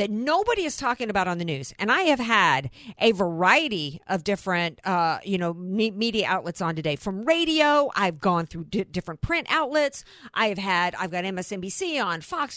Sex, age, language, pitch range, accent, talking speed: female, 50-69, English, 195-300 Hz, American, 190 wpm